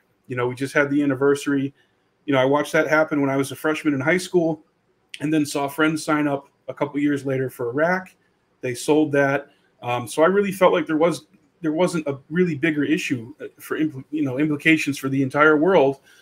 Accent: American